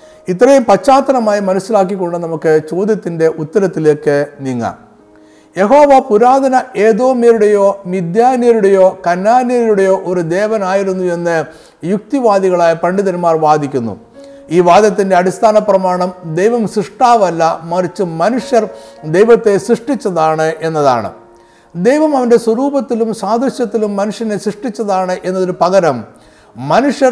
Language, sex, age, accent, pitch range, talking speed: Malayalam, male, 50-69, native, 170-225 Hz, 85 wpm